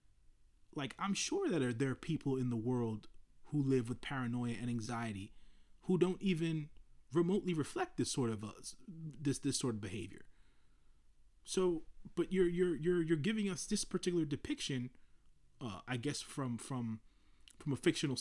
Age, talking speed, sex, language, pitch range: 30-49, 160 wpm, male, English, 115-155 Hz